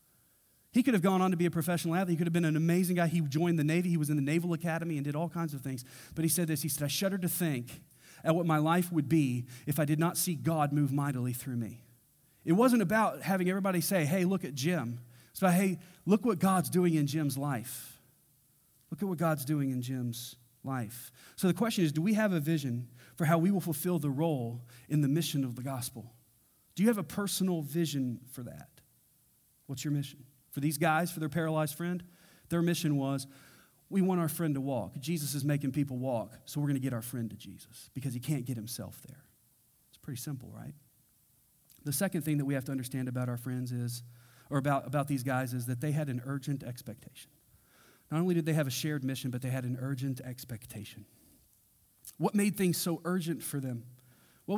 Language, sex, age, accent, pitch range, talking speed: English, male, 40-59, American, 130-170 Hz, 225 wpm